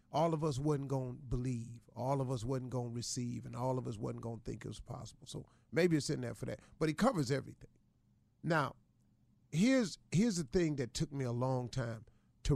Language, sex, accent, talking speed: English, male, American, 215 wpm